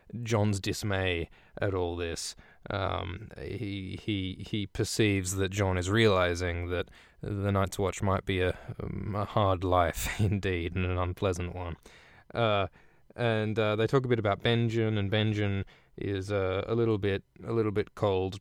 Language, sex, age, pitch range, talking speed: English, male, 20-39, 95-120 Hz, 165 wpm